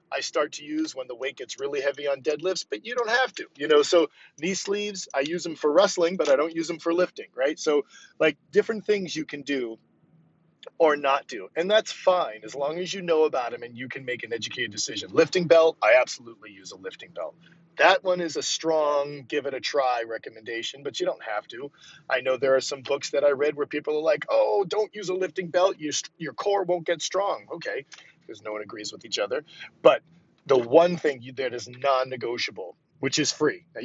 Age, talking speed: 40-59, 230 wpm